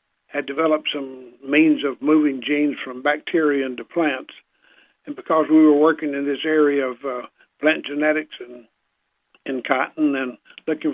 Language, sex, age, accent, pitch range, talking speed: English, male, 60-79, American, 135-155 Hz, 155 wpm